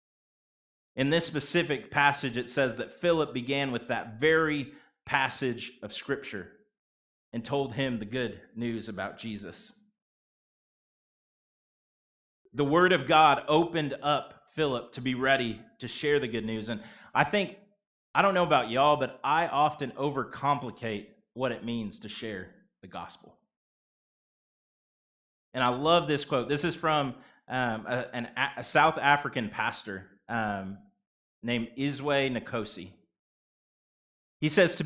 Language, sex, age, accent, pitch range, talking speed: English, male, 30-49, American, 120-150 Hz, 135 wpm